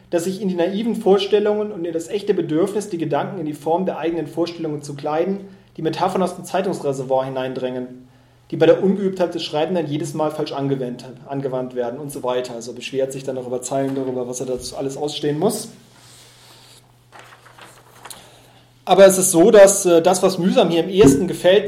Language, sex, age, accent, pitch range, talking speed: German, male, 30-49, German, 135-180 Hz, 190 wpm